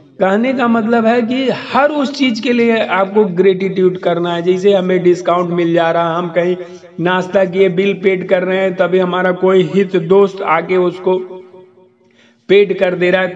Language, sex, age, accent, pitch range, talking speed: Hindi, male, 50-69, native, 165-205 Hz, 180 wpm